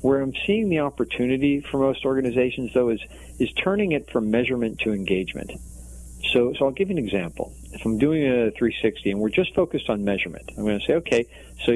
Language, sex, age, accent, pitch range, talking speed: English, male, 40-59, American, 95-130 Hz, 205 wpm